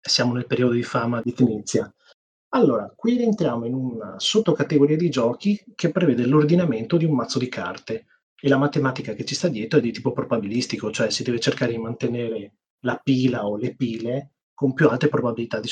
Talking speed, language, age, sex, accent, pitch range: 190 wpm, Italian, 30-49, male, native, 115-155 Hz